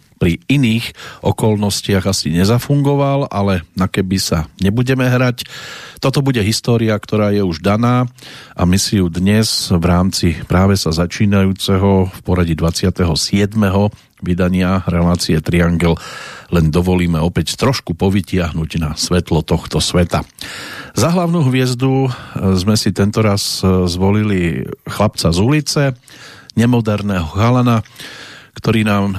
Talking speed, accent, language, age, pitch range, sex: 120 wpm, Czech, English, 50-69, 90-115 Hz, male